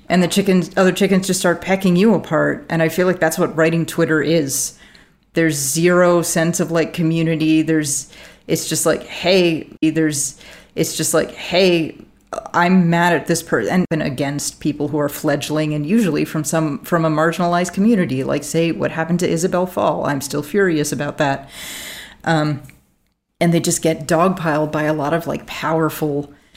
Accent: American